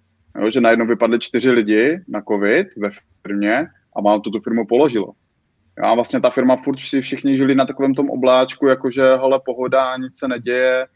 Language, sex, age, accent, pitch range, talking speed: Czech, male, 20-39, native, 115-125 Hz, 190 wpm